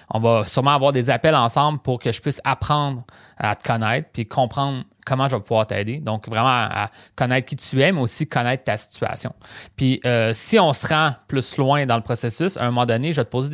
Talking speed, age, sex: 235 wpm, 30-49, male